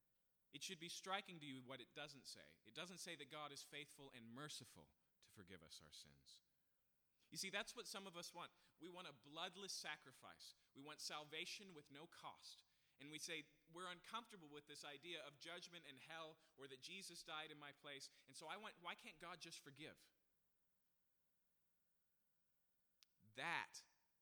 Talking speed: 180 wpm